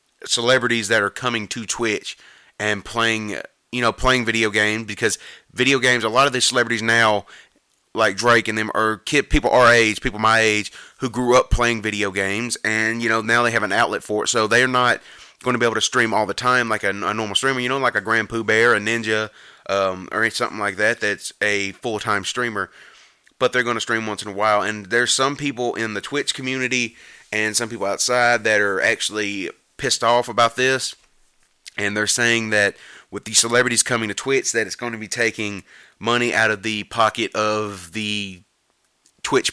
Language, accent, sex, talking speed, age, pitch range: English, American, male, 205 wpm, 30-49, 105-120 Hz